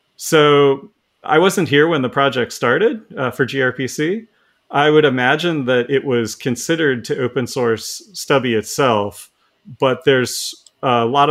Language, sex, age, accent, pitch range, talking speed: English, male, 30-49, American, 110-130 Hz, 145 wpm